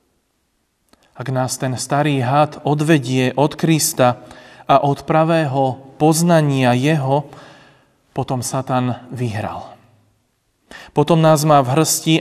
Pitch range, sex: 130-155 Hz, male